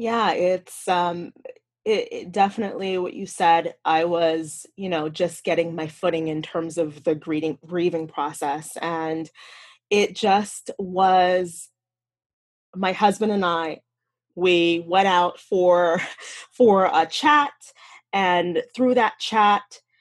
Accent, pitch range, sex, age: American, 165-205 Hz, female, 20-39